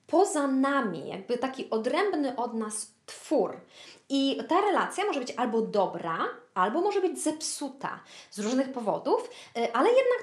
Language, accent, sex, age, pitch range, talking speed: Polish, native, female, 20-39, 225-340 Hz, 140 wpm